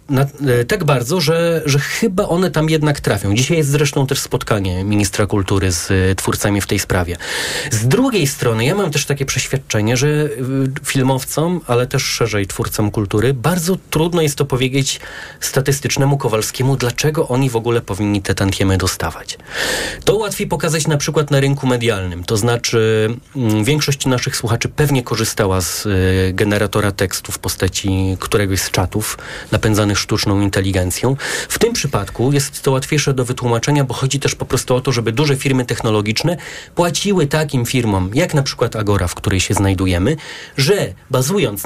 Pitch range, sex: 105-145 Hz, male